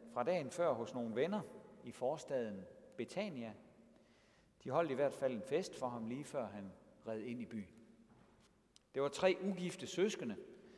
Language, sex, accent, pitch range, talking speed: Danish, male, native, 115-185 Hz, 165 wpm